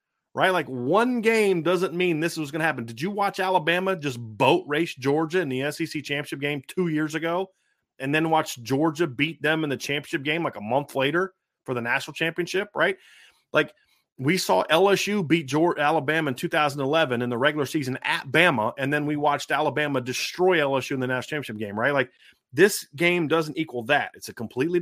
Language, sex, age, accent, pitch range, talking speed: English, male, 30-49, American, 135-180 Hz, 200 wpm